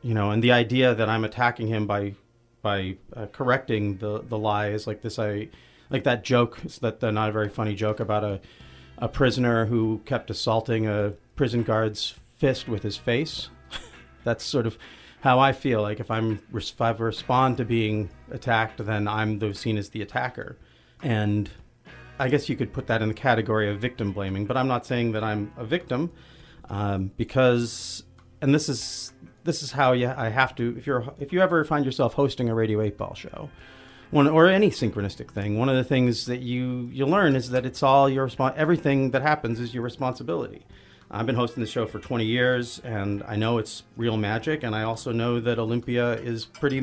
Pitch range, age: 105-125 Hz, 40-59